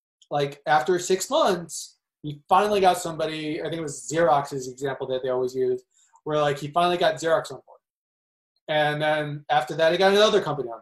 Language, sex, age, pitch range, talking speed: English, male, 20-39, 145-185 Hz, 195 wpm